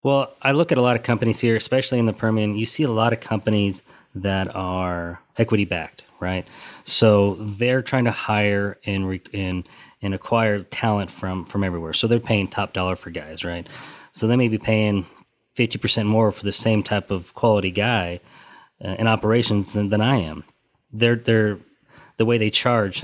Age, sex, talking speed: 30-49, male, 190 wpm